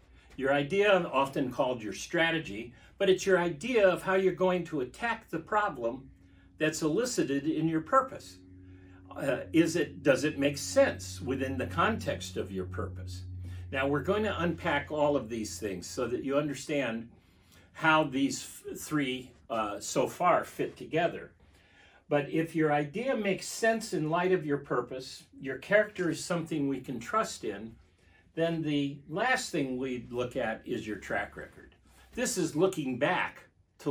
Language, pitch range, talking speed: English, 130-190 Hz, 165 wpm